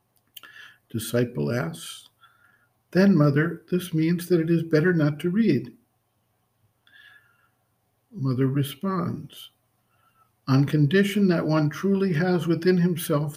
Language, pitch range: English, 140-185 Hz